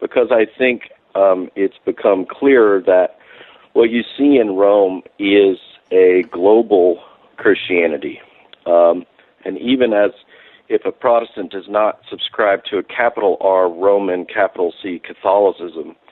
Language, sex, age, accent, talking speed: English, male, 50-69, American, 130 wpm